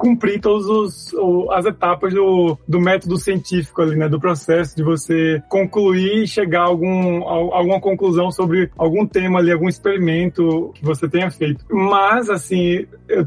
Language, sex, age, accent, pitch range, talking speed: Portuguese, male, 20-39, Brazilian, 165-190 Hz, 160 wpm